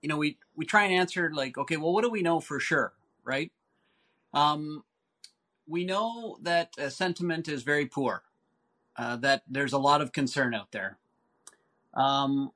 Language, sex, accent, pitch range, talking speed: English, male, American, 130-170 Hz, 170 wpm